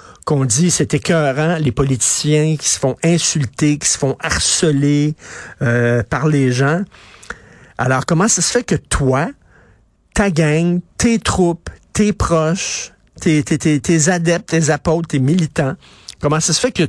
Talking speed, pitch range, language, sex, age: 160 wpm, 125-170 Hz, French, male, 50-69